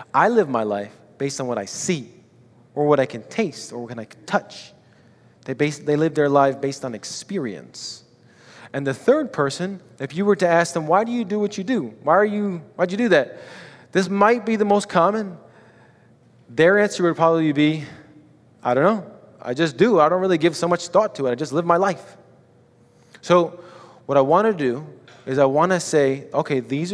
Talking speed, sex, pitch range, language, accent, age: 210 wpm, male, 130-180 Hz, English, American, 20-39